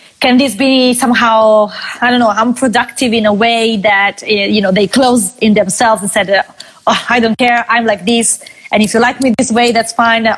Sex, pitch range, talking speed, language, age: female, 210-245 Hz, 215 wpm, Italian, 20-39